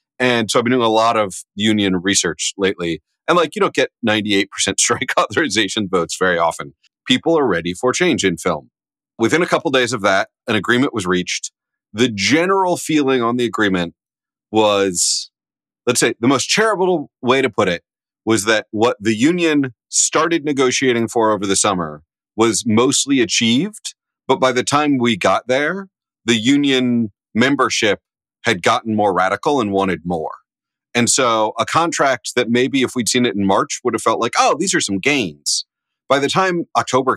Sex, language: male, English